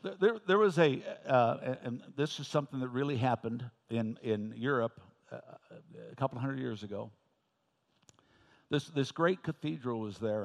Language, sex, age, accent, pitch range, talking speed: English, male, 60-79, American, 125-185 Hz, 155 wpm